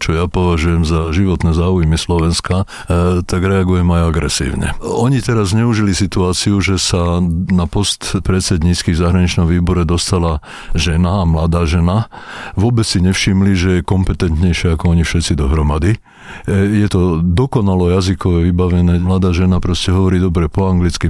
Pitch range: 85-100 Hz